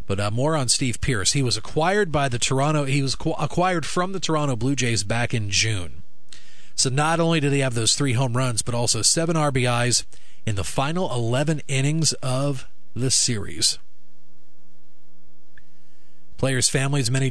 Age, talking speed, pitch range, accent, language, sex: 40-59, 165 wpm, 110-145 Hz, American, English, male